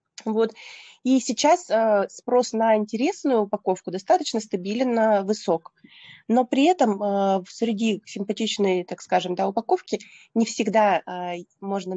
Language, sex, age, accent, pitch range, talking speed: Russian, female, 20-39, native, 185-225 Hz, 130 wpm